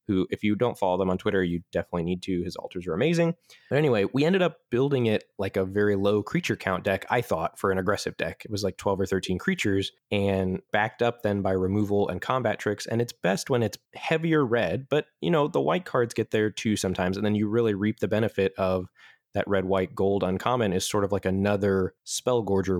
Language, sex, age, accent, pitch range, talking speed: English, male, 20-39, American, 95-120 Hz, 235 wpm